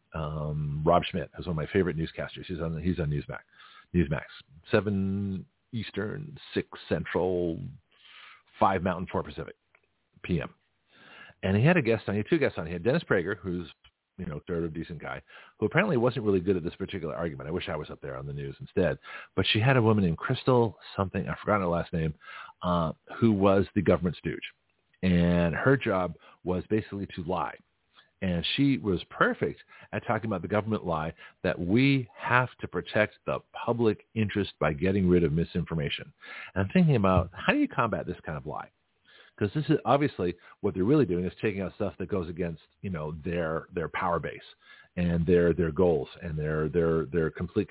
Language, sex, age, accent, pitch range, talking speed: English, male, 50-69, American, 85-105 Hz, 195 wpm